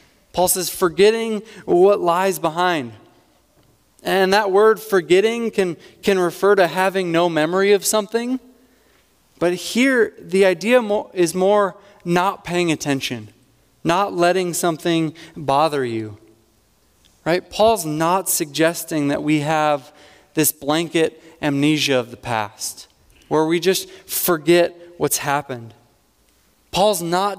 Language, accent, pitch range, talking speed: English, American, 150-195 Hz, 120 wpm